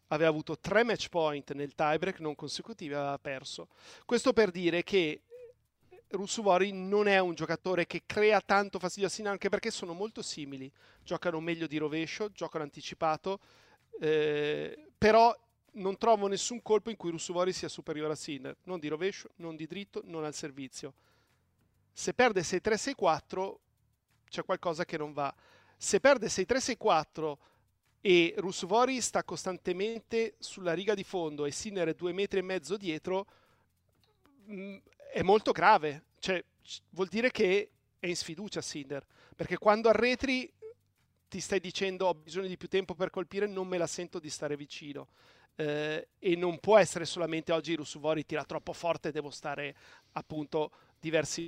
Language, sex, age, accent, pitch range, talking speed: Italian, male, 40-59, native, 155-200 Hz, 160 wpm